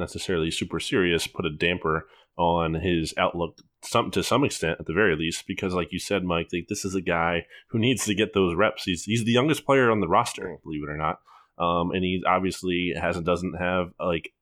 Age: 20-39